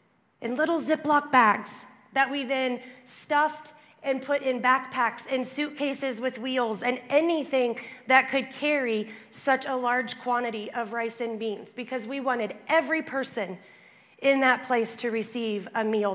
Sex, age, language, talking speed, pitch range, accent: female, 30-49, English, 150 wpm, 220-265 Hz, American